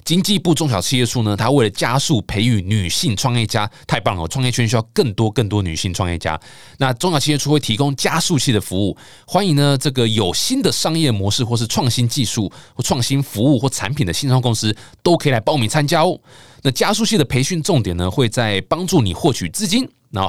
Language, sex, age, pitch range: Chinese, male, 20-39, 100-145 Hz